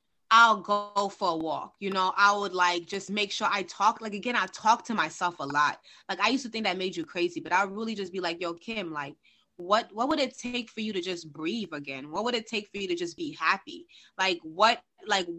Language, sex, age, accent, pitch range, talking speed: English, female, 20-39, American, 185-245 Hz, 250 wpm